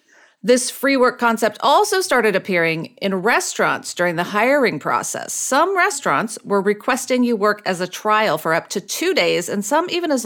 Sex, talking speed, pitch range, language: female, 180 wpm, 185-240 Hz, English